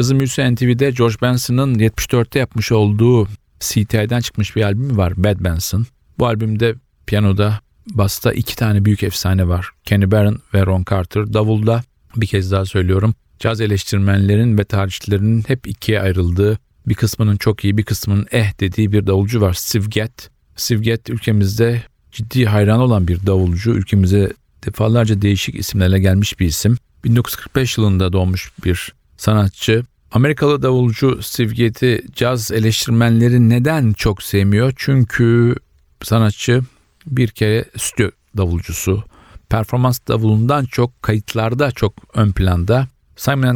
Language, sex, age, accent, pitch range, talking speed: Turkish, male, 40-59, native, 100-120 Hz, 130 wpm